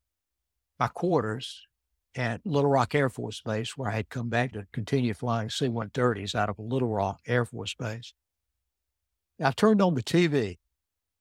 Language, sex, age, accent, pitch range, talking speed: English, male, 60-79, American, 100-140 Hz, 155 wpm